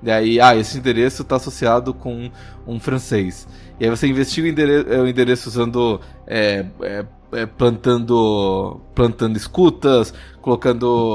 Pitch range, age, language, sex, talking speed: 115-140 Hz, 20-39, Portuguese, male, 145 wpm